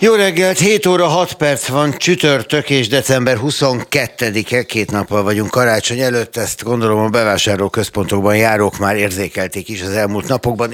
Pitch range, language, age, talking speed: 85-115 Hz, Hungarian, 60-79, 155 wpm